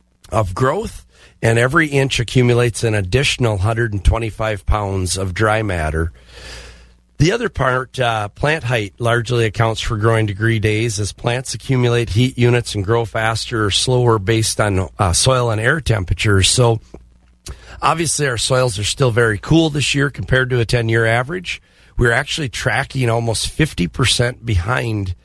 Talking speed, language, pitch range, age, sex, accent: 150 wpm, English, 100-130 Hz, 40-59, male, American